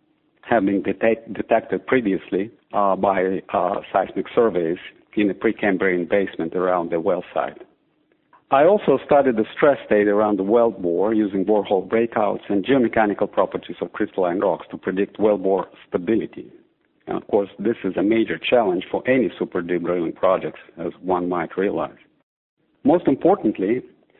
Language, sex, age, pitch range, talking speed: English, male, 50-69, 100-130 Hz, 155 wpm